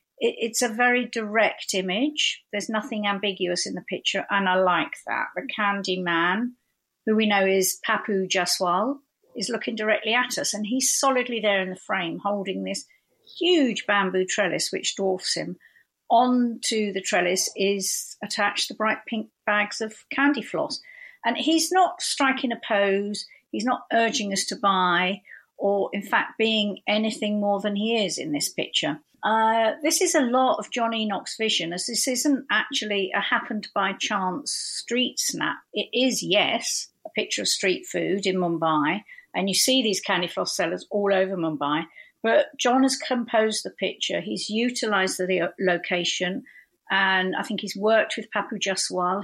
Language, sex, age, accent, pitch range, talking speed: English, female, 50-69, British, 190-240 Hz, 165 wpm